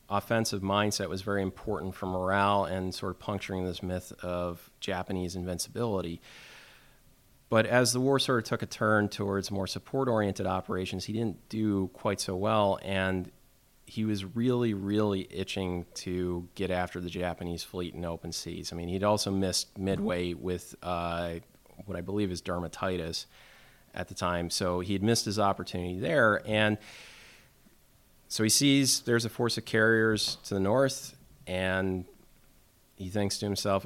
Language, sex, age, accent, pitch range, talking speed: English, male, 30-49, American, 90-105 Hz, 160 wpm